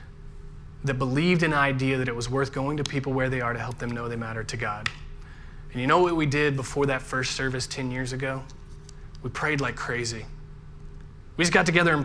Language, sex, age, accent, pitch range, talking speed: English, male, 20-39, American, 130-155 Hz, 225 wpm